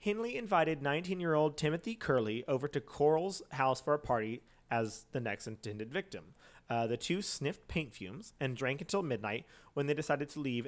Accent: American